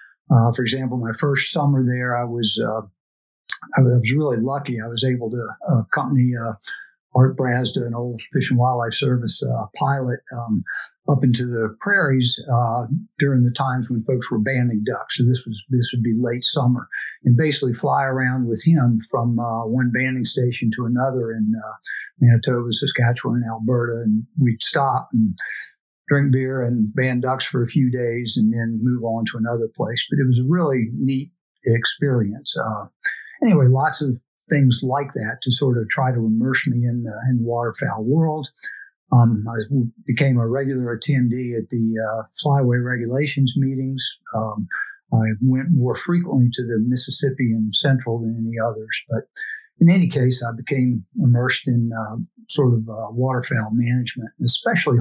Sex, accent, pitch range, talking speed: male, American, 115-135 Hz, 170 wpm